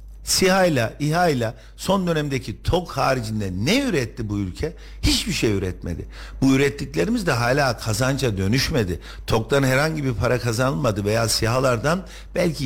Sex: male